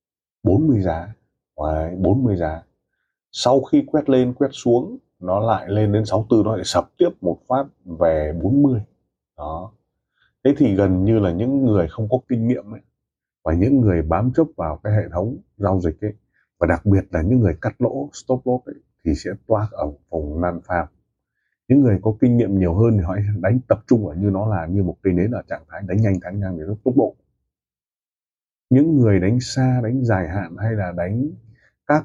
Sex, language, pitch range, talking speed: male, Vietnamese, 90-120 Hz, 200 wpm